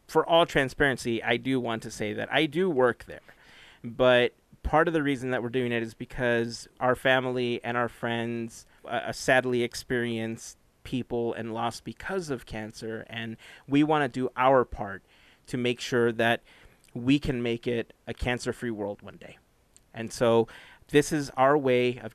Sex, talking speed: male, 175 wpm